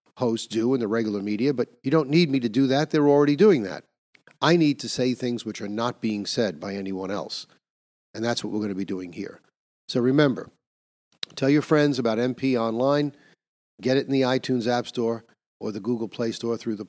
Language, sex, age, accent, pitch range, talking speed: English, male, 50-69, American, 105-130 Hz, 220 wpm